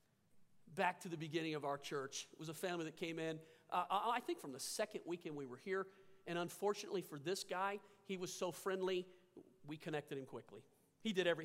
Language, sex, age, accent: English, male, 50-69, American